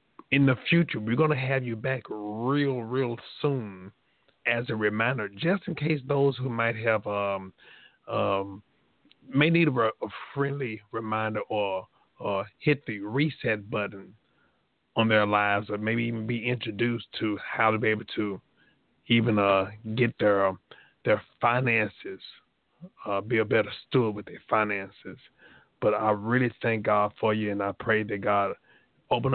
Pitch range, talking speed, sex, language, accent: 105-125 Hz, 155 wpm, male, English, American